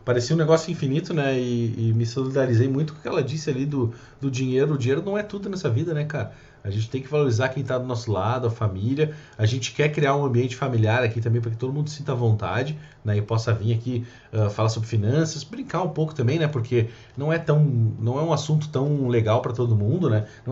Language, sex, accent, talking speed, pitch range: Portuguese, male, Brazilian, 235 wpm, 115-145 Hz